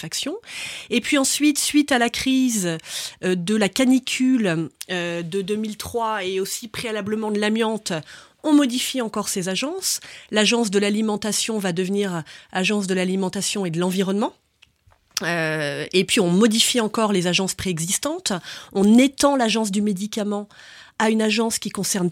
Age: 30-49